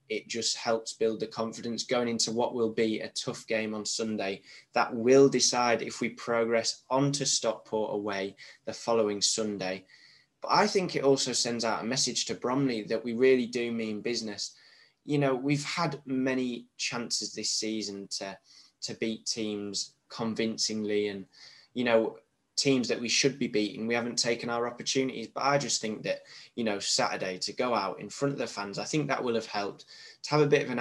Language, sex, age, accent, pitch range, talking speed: English, male, 10-29, British, 110-135 Hz, 195 wpm